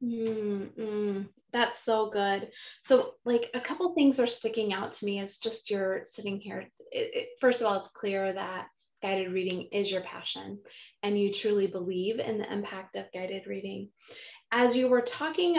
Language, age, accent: English, 20-39, American